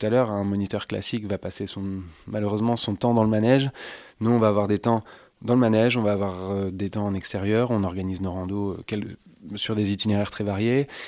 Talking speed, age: 215 wpm, 20-39